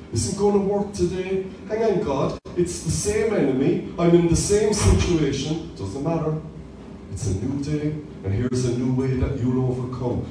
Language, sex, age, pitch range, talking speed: English, male, 40-59, 130-175 Hz, 185 wpm